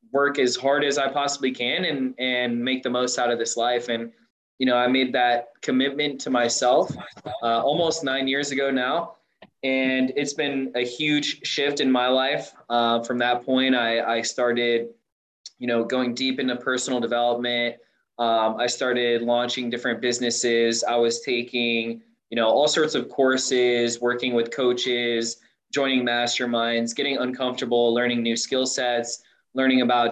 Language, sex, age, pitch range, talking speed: English, male, 20-39, 120-130 Hz, 165 wpm